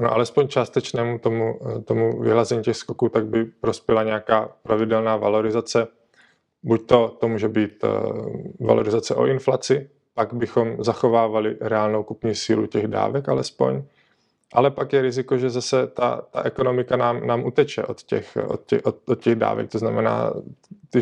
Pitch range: 110-120 Hz